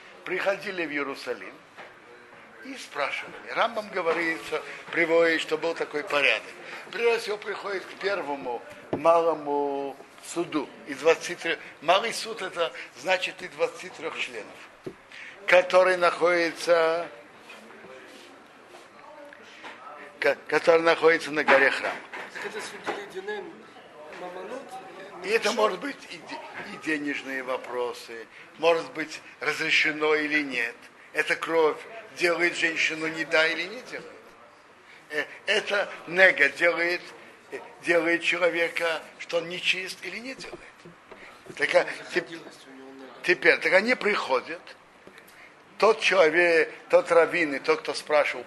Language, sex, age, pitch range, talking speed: Russian, male, 60-79, 155-185 Hz, 95 wpm